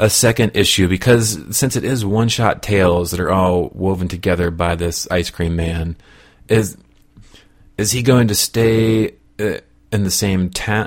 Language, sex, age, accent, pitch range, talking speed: English, male, 30-49, American, 95-115 Hz, 165 wpm